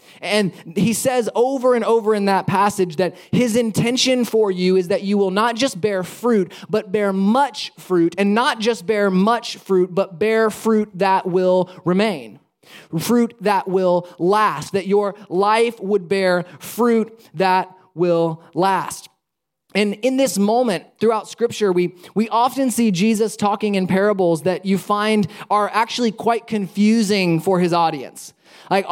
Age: 20-39